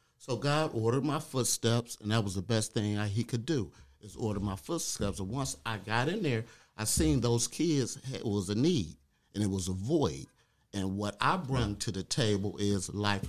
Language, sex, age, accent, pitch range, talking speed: English, male, 50-69, American, 105-155 Hz, 210 wpm